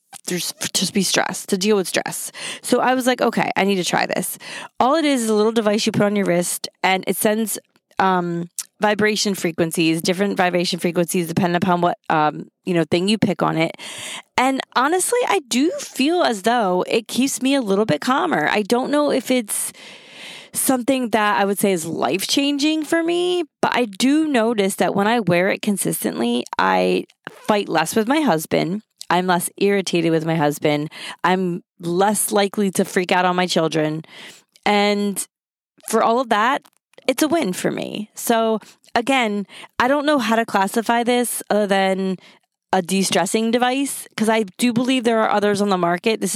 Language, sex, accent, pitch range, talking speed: English, female, American, 180-235 Hz, 185 wpm